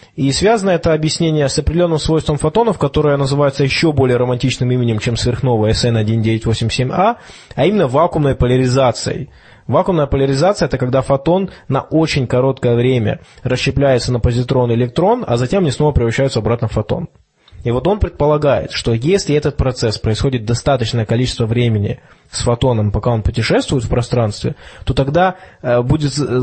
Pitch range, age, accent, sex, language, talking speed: 120-145 Hz, 20-39, native, male, Russian, 145 wpm